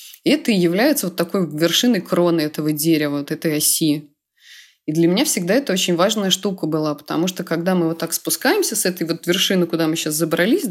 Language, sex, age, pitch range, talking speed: Russian, female, 20-39, 155-190 Hz, 200 wpm